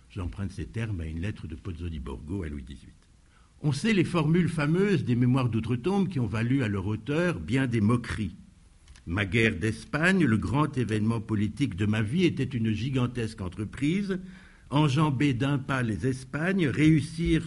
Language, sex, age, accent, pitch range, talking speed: French, male, 60-79, French, 105-150 Hz, 170 wpm